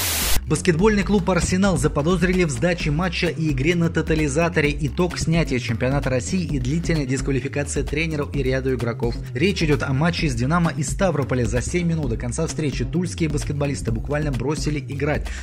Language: Russian